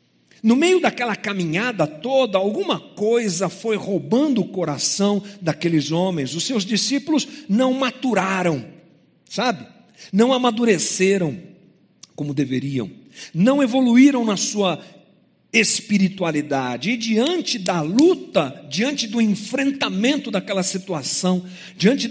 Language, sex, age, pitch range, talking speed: Portuguese, male, 60-79, 155-220 Hz, 105 wpm